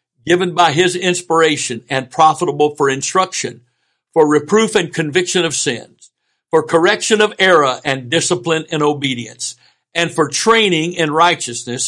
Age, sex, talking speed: 60-79, male, 135 wpm